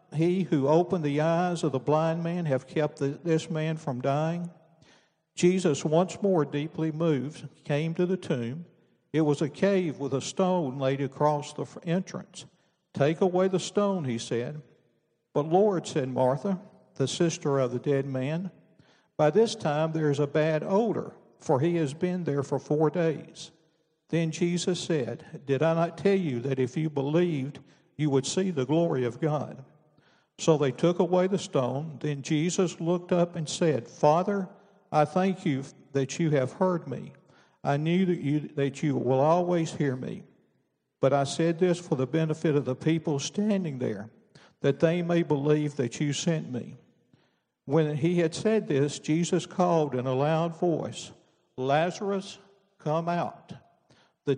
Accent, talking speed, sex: American, 165 wpm, male